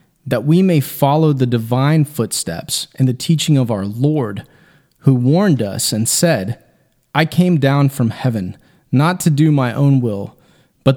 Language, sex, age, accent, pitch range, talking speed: English, male, 30-49, American, 130-160 Hz, 165 wpm